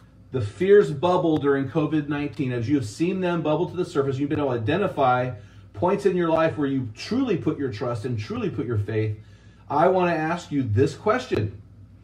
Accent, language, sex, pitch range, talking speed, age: American, English, male, 105-170 Hz, 200 wpm, 30-49